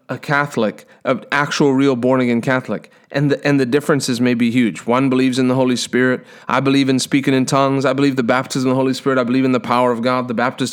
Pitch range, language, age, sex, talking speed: 125-145 Hz, English, 30-49, male, 245 wpm